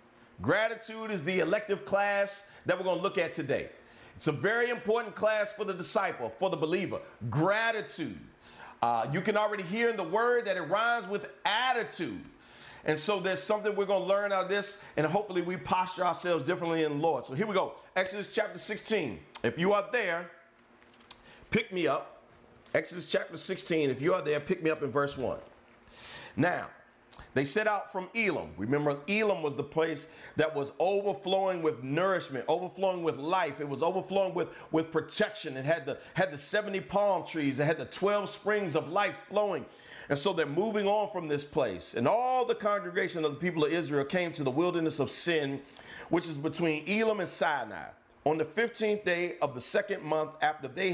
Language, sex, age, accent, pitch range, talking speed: English, male, 40-59, American, 155-205 Hz, 190 wpm